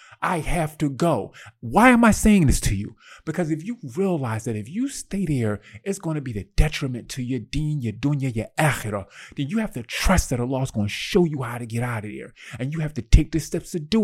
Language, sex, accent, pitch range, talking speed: English, male, American, 135-200 Hz, 255 wpm